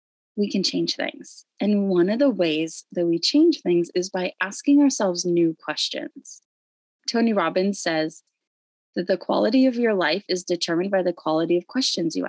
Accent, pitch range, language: American, 170-230 Hz, English